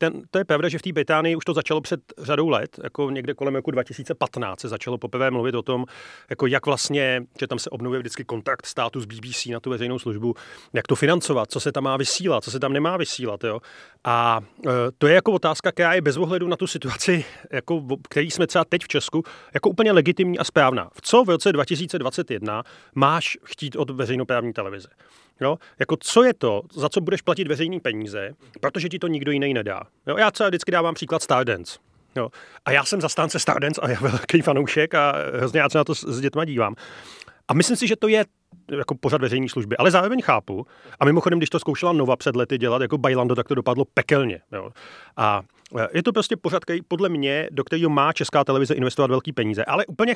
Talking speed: 205 wpm